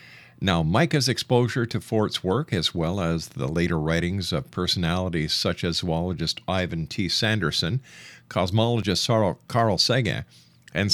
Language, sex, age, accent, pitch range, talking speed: English, male, 50-69, American, 90-130 Hz, 130 wpm